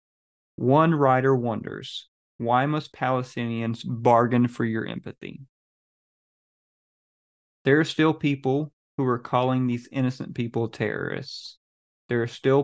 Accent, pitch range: American, 115-135 Hz